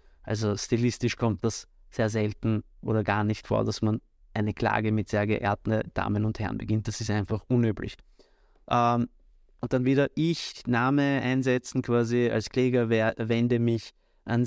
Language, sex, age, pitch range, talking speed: German, male, 20-39, 110-125 Hz, 160 wpm